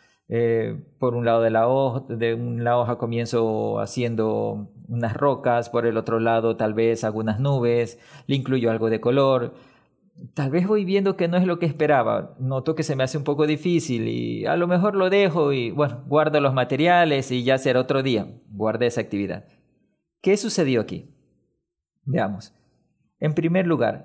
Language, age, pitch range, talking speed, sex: Spanish, 40-59, 120-165 Hz, 175 wpm, male